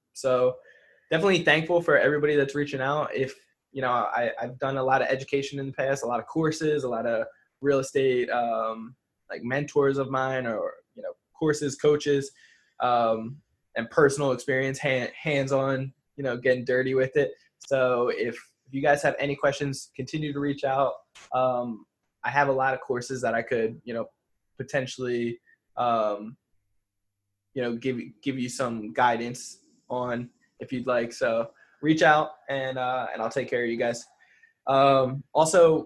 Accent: American